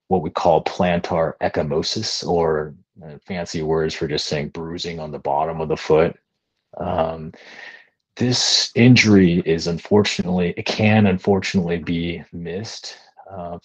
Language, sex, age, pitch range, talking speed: English, male, 30-49, 80-95 Hz, 130 wpm